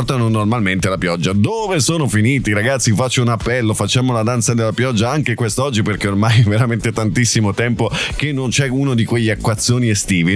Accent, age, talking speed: native, 30-49, 185 wpm